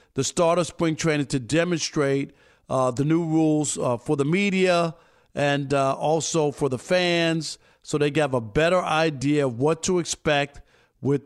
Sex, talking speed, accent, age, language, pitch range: male, 170 wpm, American, 50-69, English, 140-170 Hz